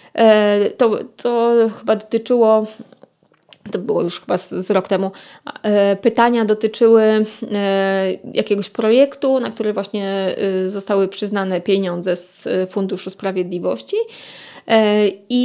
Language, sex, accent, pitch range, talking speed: Polish, female, native, 205-260 Hz, 100 wpm